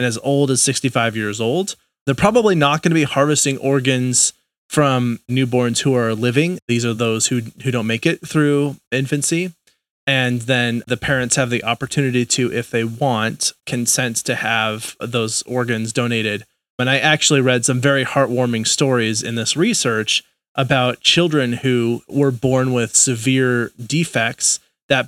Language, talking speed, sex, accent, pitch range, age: English, 160 wpm, male, American, 115-135 Hz, 30-49